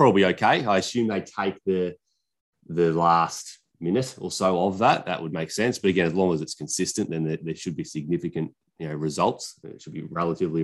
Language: English